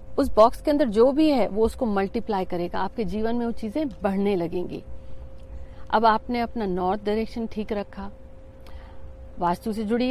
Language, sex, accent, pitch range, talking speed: Hindi, female, native, 205-265 Hz, 165 wpm